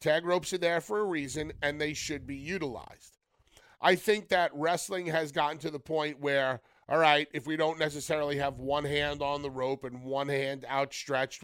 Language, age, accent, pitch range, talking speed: English, 30-49, American, 130-160 Hz, 200 wpm